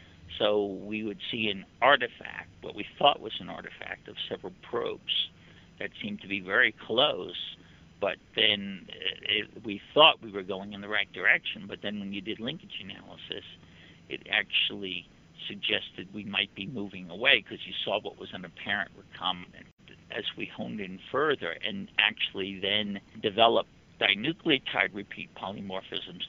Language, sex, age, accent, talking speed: English, male, 60-79, American, 155 wpm